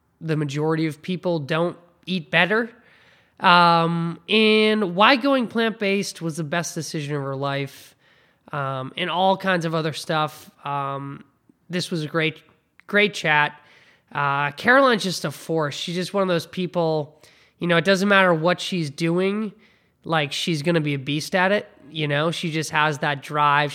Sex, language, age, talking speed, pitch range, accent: male, English, 20-39, 175 wpm, 145-180 Hz, American